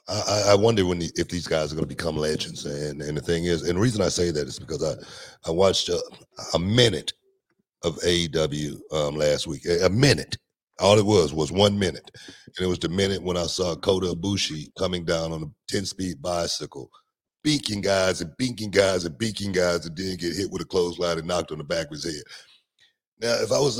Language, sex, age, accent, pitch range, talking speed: English, male, 40-59, American, 85-105 Hz, 220 wpm